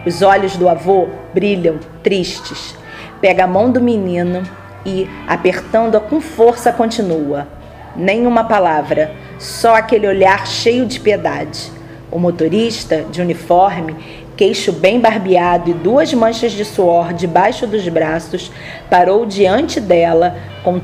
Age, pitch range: 40-59, 175-225 Hz